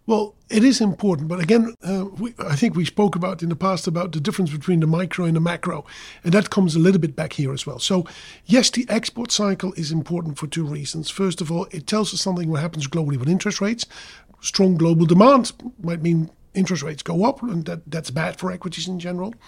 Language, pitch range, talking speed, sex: English, 165-195 Hz, 230 wpm, male